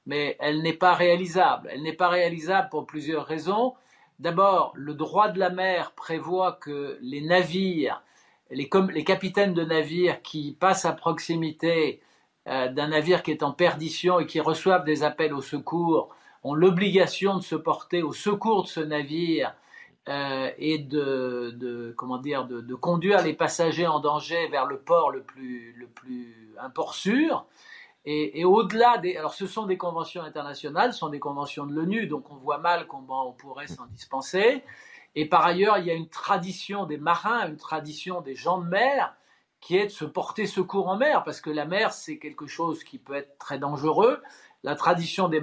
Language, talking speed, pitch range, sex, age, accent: French, 185 wpm, 150-185 Hz, male, 50-69, French